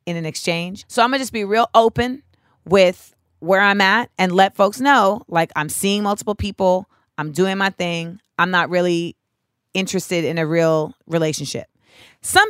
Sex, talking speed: female, 175 wpm